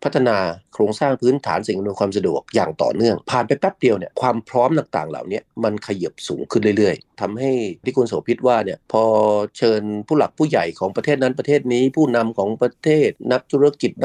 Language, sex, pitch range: Thai, male, 110-145 Hz